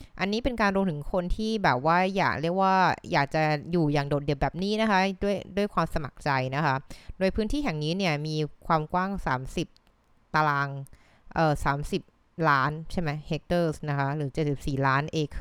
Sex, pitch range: female, 145-185 Hz